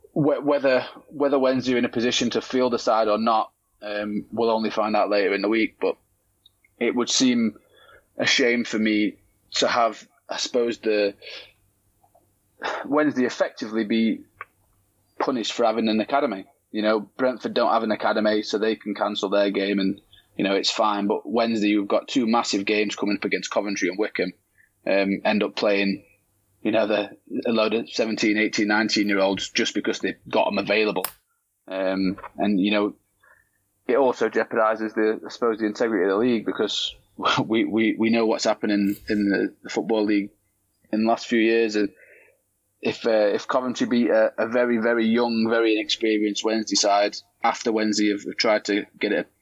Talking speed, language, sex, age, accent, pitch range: 175 wpm, English, male, 20-39, British, 105-115 Hz